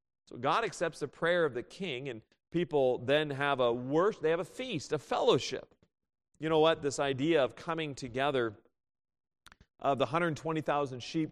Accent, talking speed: American, 170 wpm